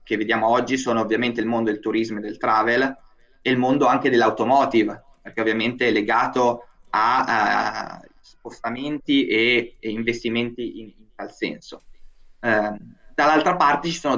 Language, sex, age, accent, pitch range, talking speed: Italian, male, 20-39, native, 115-130 Hz, 150 wpm